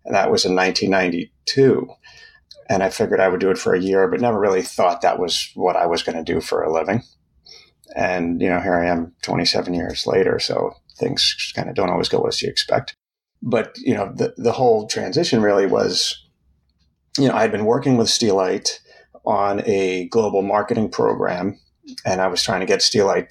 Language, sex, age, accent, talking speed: English, male, 30-49, American, 200 wpm